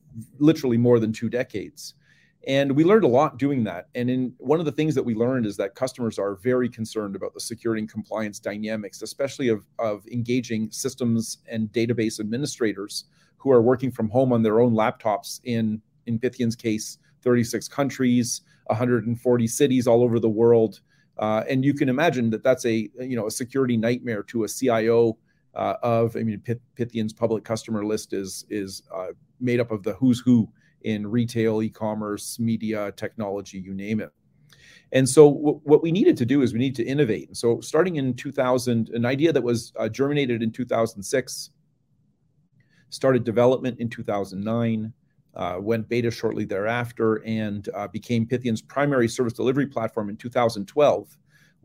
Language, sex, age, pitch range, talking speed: English, male, 40-59, 110-130 Hz, 170 wpm